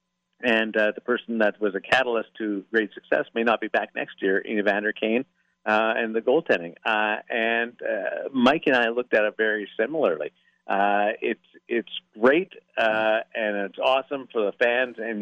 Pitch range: 105-120 Hz